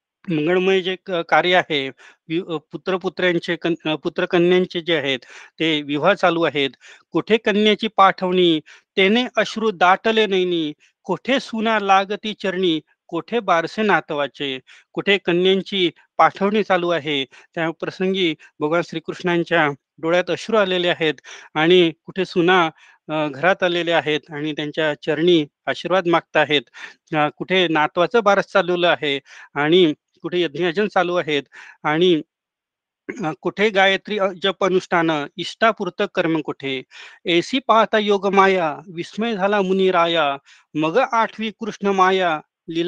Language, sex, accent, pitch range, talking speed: Marathi, male, native, 160-195 Hz, 65 wpm